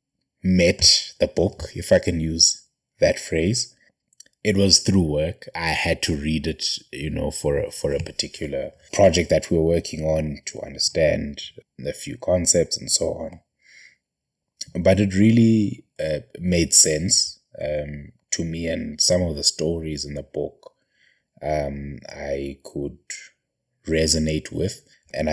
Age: 20-39